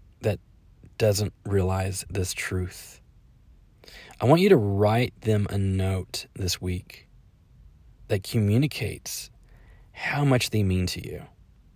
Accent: American